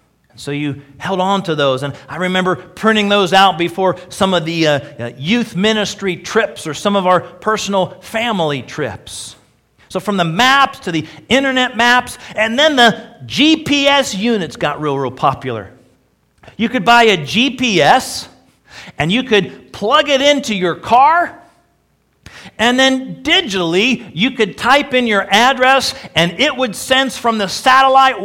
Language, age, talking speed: English, 50-69, 155 wpm